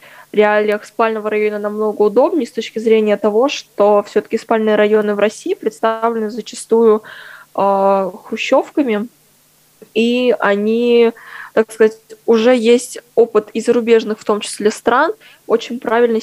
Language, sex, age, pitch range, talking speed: Russian, female, 20-39, 205-225 Hz, 125 wpm